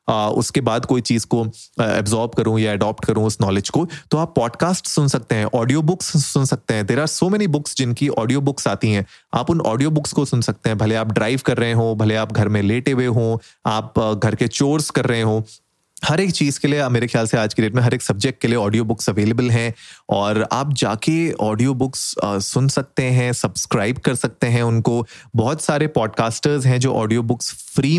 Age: 30-49